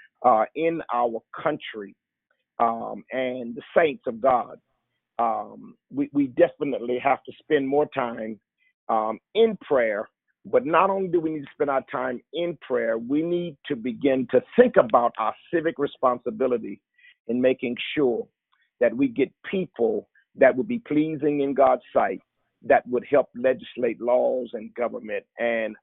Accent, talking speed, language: American, 155 wpm, English